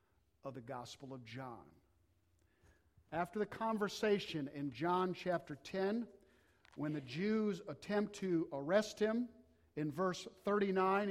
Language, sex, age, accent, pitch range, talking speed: English, male, 50-69, American, 120-195 Hz, 120 wpm